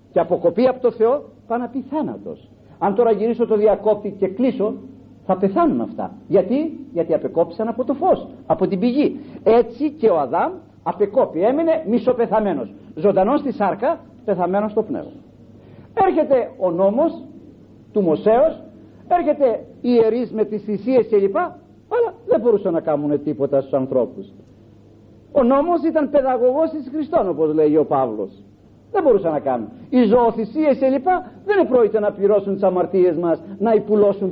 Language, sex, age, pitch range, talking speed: Greek, male, 50-69, 170-260 Hz, 145 wpm